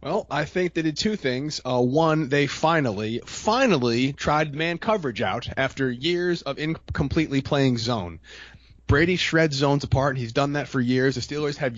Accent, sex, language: American, male, English